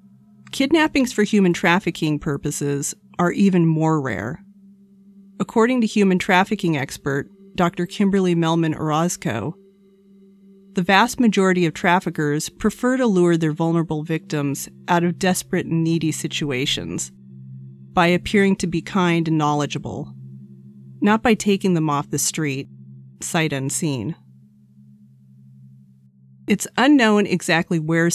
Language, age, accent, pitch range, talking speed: English, 40-59, American, 140-190 Hz, 115 wpm